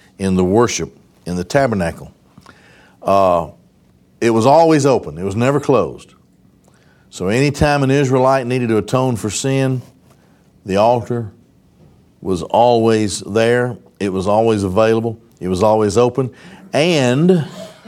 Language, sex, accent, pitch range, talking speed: English, male, American, 95-130 Hz, 130 wpm